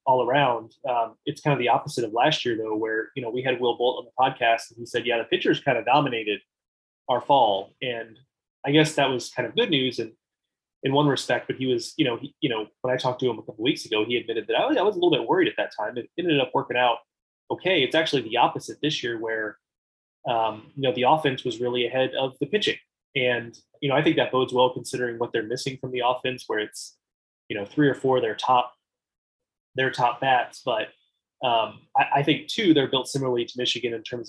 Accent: American